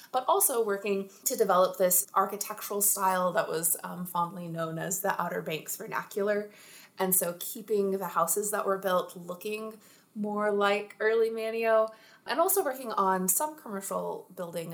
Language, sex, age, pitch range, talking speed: English, female, 20-39, 170-210 Hz, 155 wpm